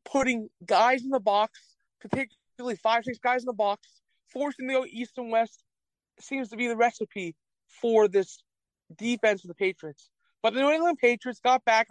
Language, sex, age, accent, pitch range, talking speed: English, male, 40-59, American, 215-265 Hz, 180 wpm